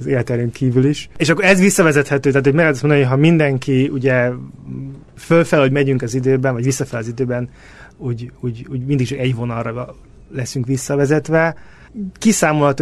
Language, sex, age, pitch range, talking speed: Hungarian, male, 30-49, 125-150 Hz, 170 wpm